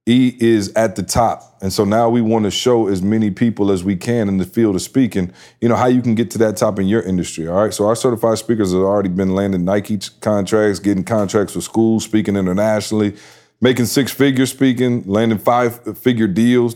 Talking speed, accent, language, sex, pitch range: 210 wpm, American, English, male, 100-115 Hz